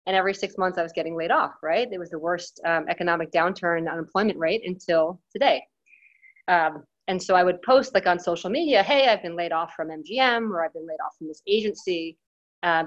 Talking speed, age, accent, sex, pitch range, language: 220 wpm, 30-49, American, female, 165-200 Hz, English